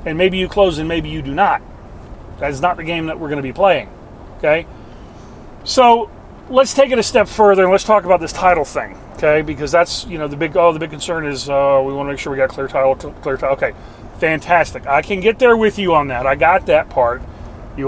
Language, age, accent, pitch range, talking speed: English, 40-59, American, 130-170 Hz, 245 wpm